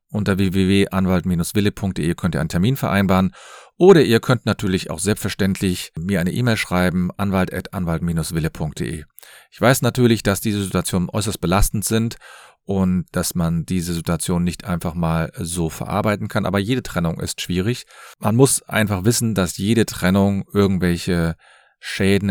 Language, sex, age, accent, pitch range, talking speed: German, male, 40-59, German, 90-105 Hz, 145 wpm